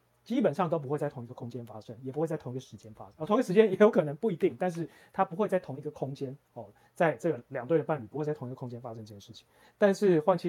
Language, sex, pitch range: Chinese, male, 125-165 Hz